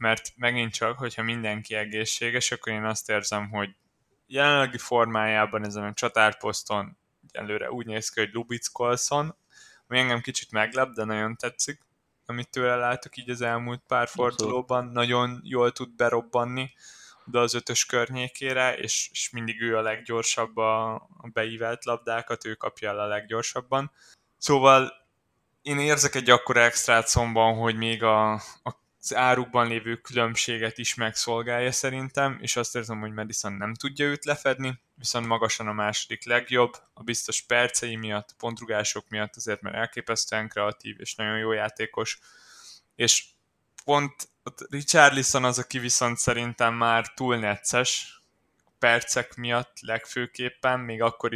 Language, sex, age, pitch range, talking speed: Hungarian, male, 20-39, 110-125 Hz, 140 wpm